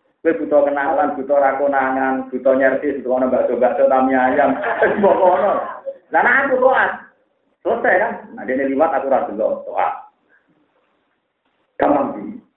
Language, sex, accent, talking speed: Indonesian, male, native, 95 wpm